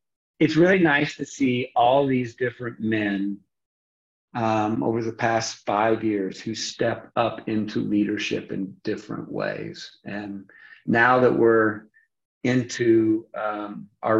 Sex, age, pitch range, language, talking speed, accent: male, 50-69, 105-125 Hz, English, 125 wpm, American